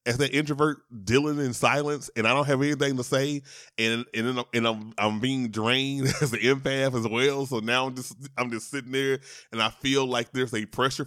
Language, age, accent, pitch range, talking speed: English, 30-49, American, 115-145 Hz, 215 wpm